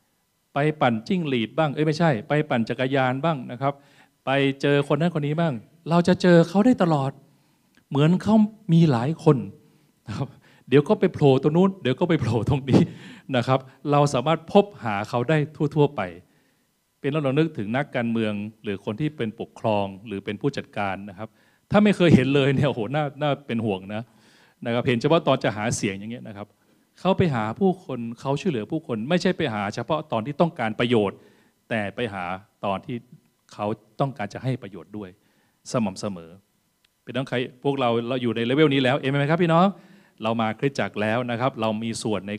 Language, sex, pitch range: Thai, male, 110-155 Hz